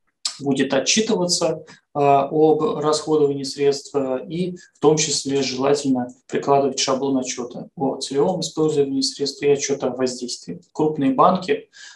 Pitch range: 135-160 Hz